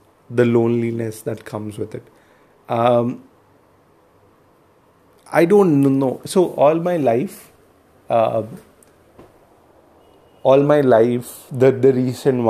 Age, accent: 30-49, Indian